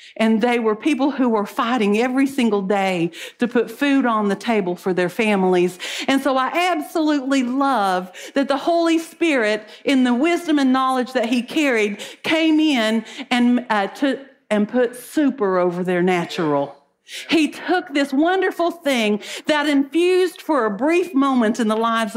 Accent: American